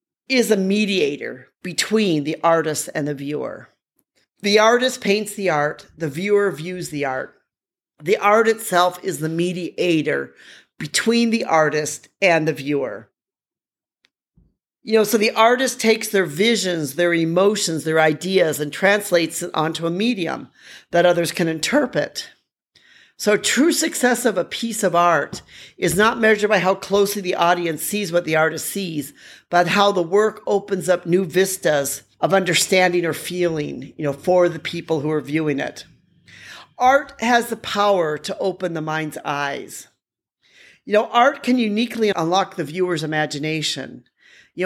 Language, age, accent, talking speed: English, 40-59, American, 155 wpm